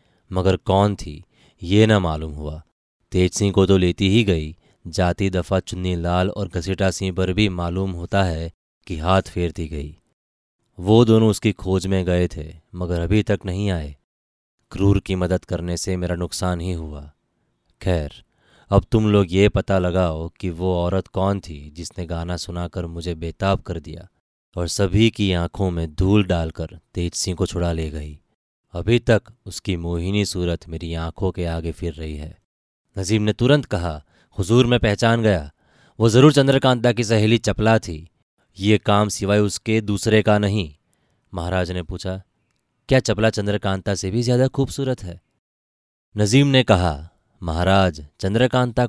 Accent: native